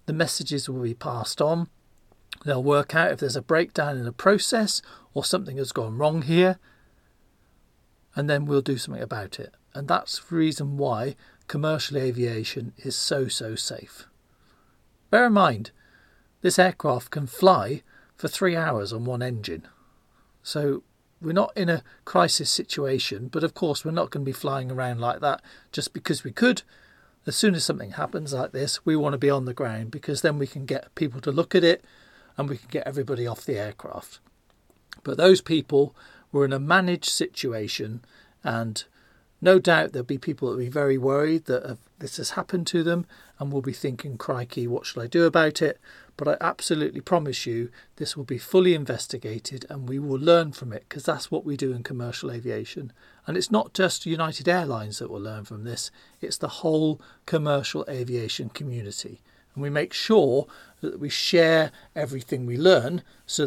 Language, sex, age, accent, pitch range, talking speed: English, male, 40-59, British, 125-165 Hz, 185 wpm